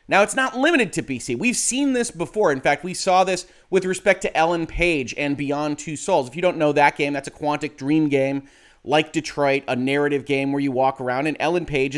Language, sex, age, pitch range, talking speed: English, male, 30-49, 130-175 Hz, 235 wpm